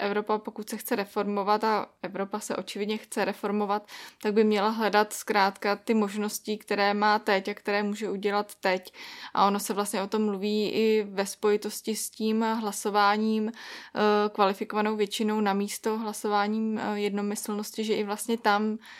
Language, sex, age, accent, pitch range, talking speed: Czech, female, 20-39, native, 205-220 Hz, 155 wpm